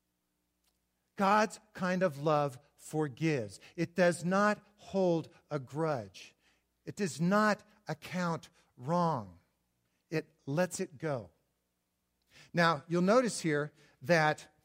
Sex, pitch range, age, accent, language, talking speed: male, 130-180 Hz, 50-69, American, English, 100 wpm